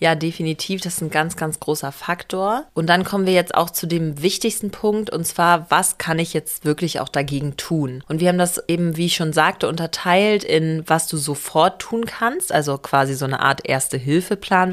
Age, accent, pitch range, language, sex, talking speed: 30-49, German, 155-185 Hz, German, female, 210 wpm